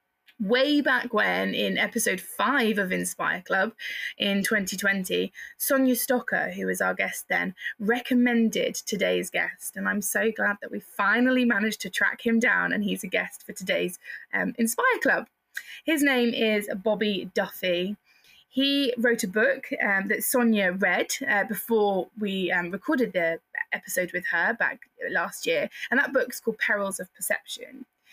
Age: 20-39